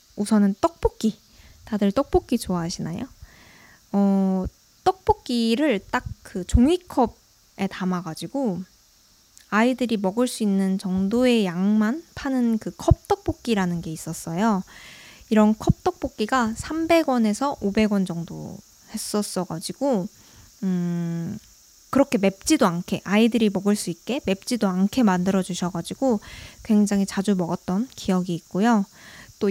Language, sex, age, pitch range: Korean, female, 20-39, 190-250 Hz